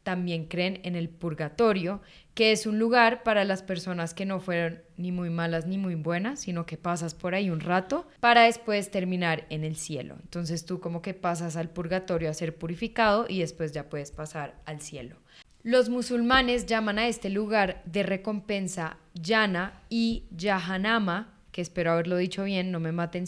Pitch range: 170-205 Hz